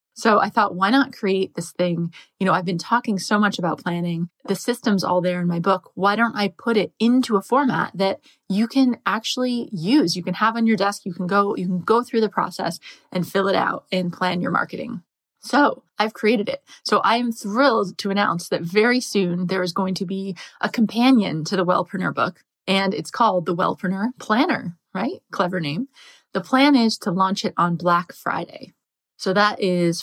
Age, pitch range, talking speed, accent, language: 20-39, 180-225 Hz, 210 wpm, American, English